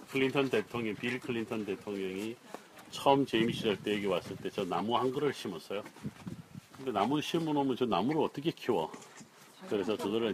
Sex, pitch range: male, 110-140 Hz